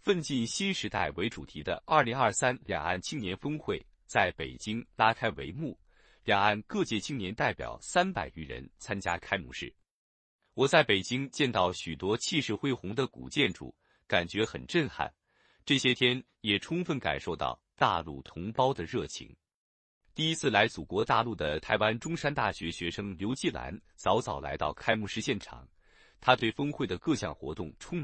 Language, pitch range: Chinese, 95-140 Hz